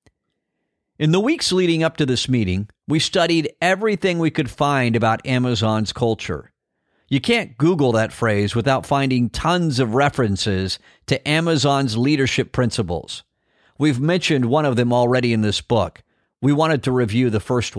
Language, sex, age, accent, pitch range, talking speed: English, male, 50-69, American, 110-155 Hz, 155 wpm